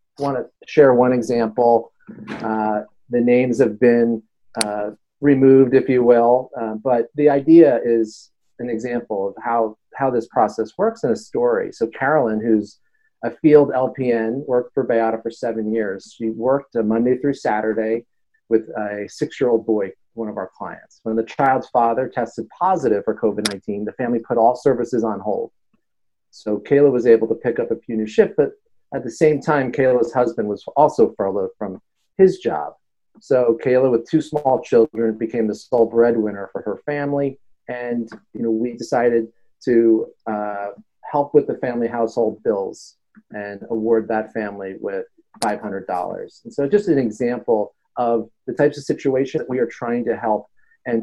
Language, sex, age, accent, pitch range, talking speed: English, male, 40-59, American, 110-140 Hz, 170 wpm